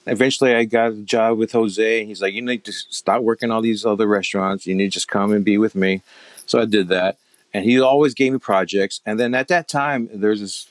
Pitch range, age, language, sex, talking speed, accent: 95-120 Hz, 40-59, English, male, 250 wpm, American